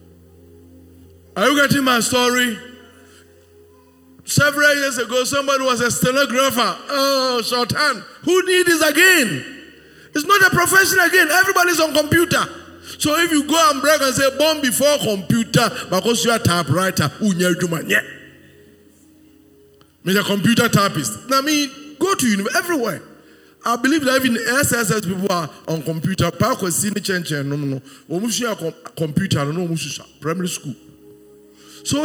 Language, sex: English, male